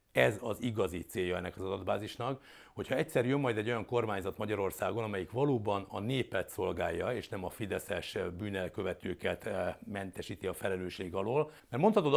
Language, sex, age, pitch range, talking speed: Hungarian, male, 60-79, 95-135 Hz, 160 wpm